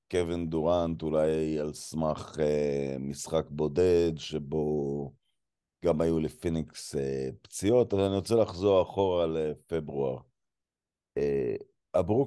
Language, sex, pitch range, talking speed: Hebrew, male, 85-120 Hz, 95 wpm